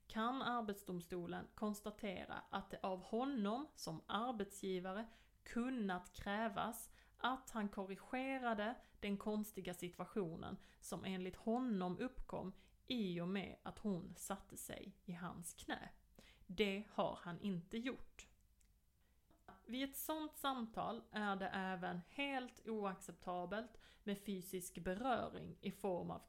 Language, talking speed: Swedish, 115 wpm